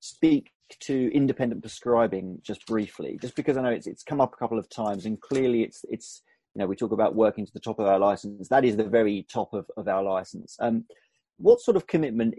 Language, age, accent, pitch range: English, 30-49, British, 105-145 Hz